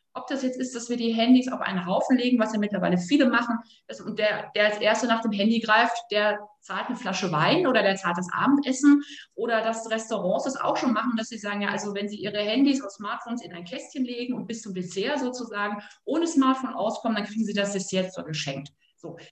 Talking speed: 230 wpm